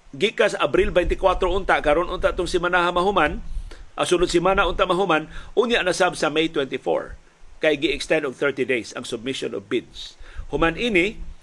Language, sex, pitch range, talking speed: Filipino, male, 145-195 Hz, 170 wpm